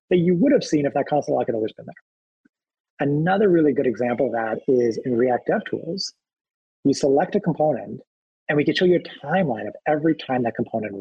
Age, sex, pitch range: 30-49, male, 130-185 Hz